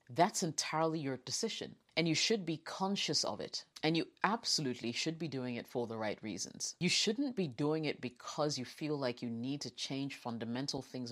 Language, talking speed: English, 200 wpm